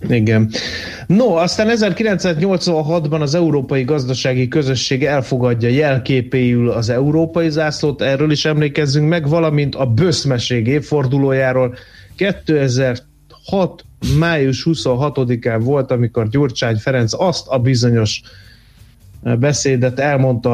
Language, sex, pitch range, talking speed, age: Hungarian, male, 115-140 Hz, 95 wpm, 30-49